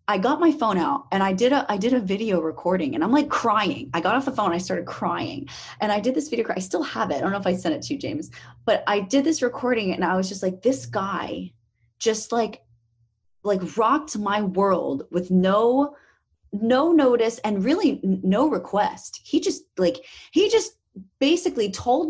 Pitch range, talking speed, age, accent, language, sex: 175-265 Hz, 210 wpm, 30-49, American, English, female